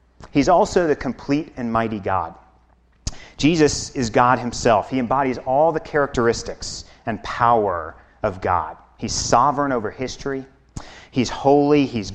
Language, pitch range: English, 115-140 Hz